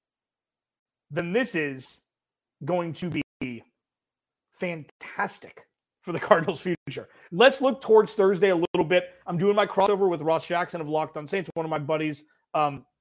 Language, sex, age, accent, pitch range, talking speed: English, male, 30-49, American, 150-185 Hz, 155 wpm